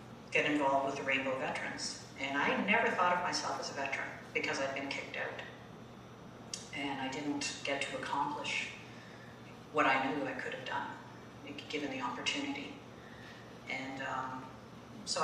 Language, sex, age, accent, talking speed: English, female, 50-69, American, 155 wpm